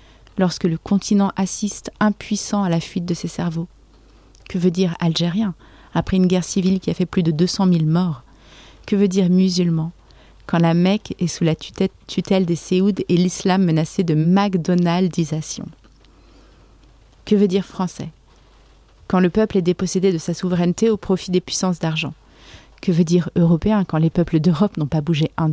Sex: female